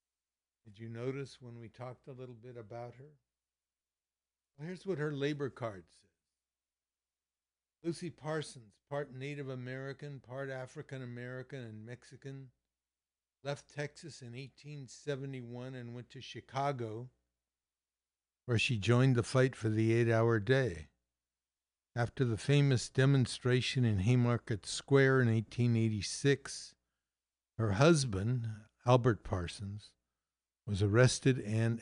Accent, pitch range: American, 80-130 Hz